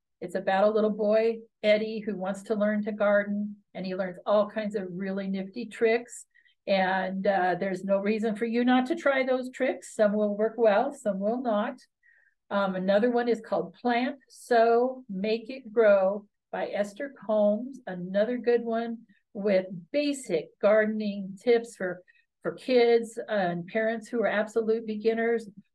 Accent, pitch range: American, 200-235 Hz